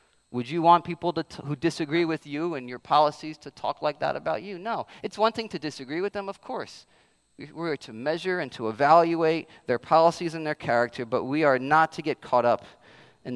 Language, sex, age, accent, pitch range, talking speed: English, male, 40-59, American, 120-170 Hz, 215 wpm